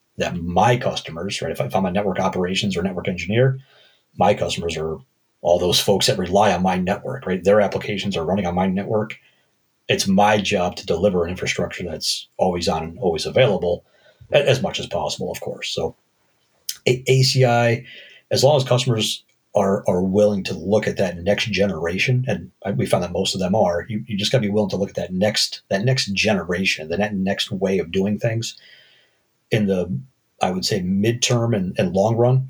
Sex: male